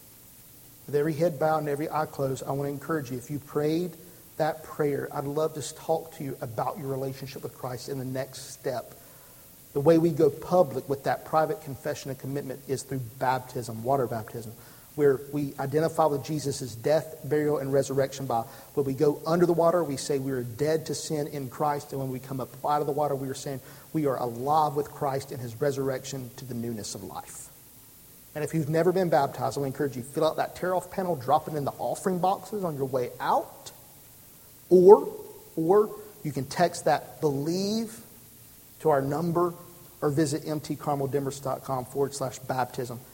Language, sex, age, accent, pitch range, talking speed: English, male, 50-69, American, 130-155 Hz, 200 wpm